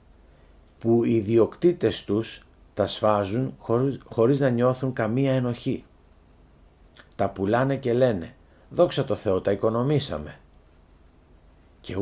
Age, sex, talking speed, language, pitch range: 50-69, male, 105 wpm, Greek, 75-125 Hz